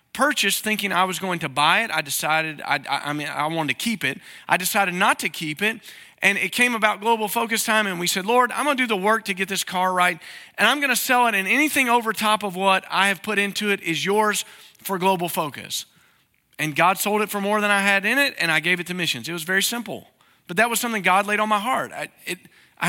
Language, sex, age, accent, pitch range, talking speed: English, male, 40-59, American, 175-230 Hz, 265 wpm